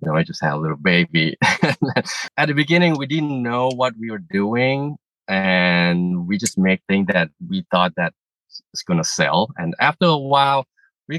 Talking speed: 190 wpm